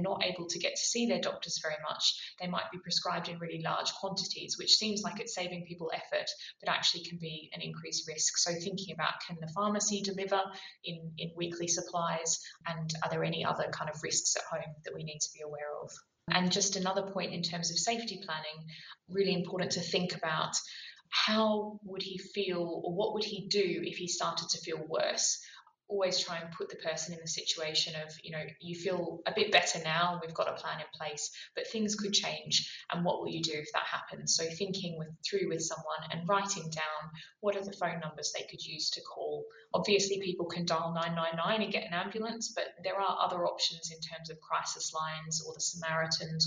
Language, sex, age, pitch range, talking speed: English, female, 20-39, 160-190 Hz, 215 wpm